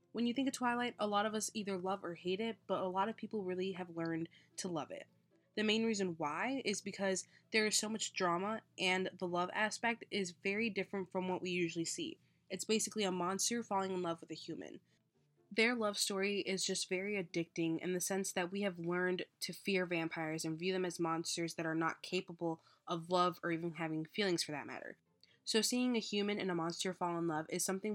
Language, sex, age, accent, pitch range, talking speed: English, female, 20-39, American, 170-205 Hz, 225 wpm